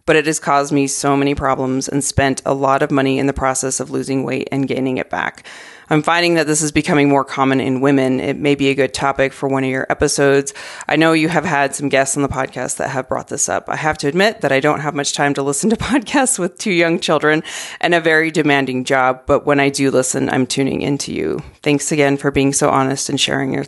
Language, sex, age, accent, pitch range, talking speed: English, female, 30-49, American, 140-165 Hz, 255 wpm